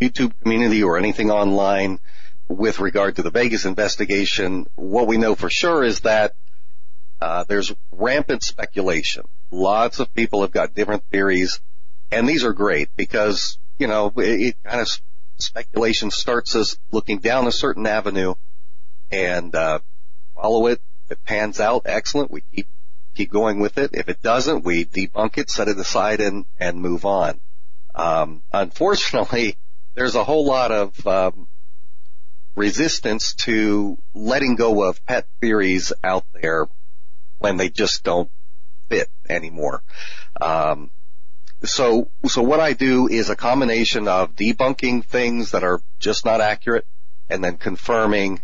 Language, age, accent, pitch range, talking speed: English, 40-59, American, 90-115 Hz, 145 wpm